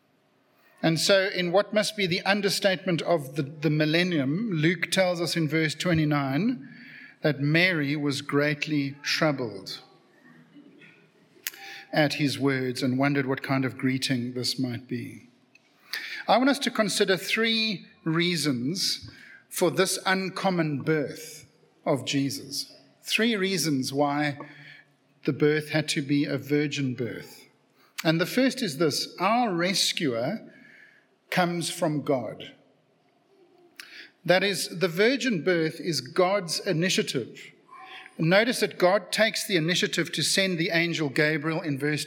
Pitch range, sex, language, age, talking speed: 150-195 Hz, male, English, 50-69, 130 wpm